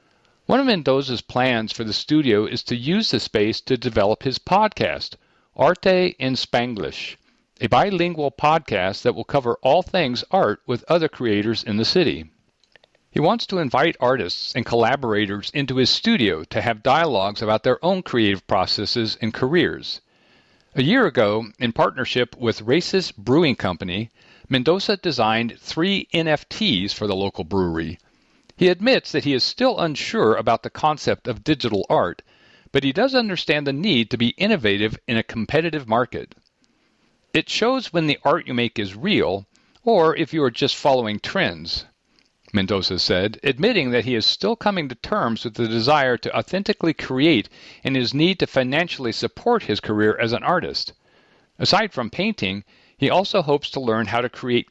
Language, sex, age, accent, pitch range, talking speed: English, male, 50-69, American, 110-160 Hz, 165 wpm